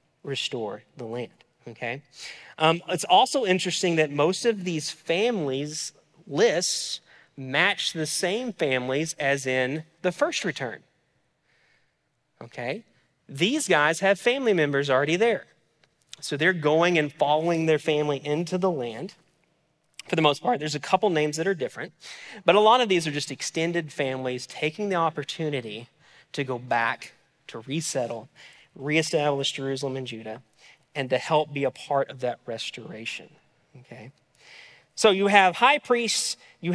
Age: 30-49